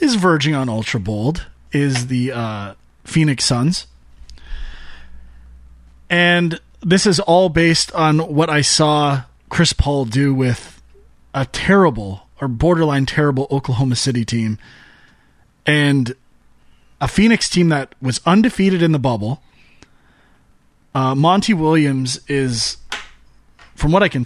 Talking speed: 120 wpm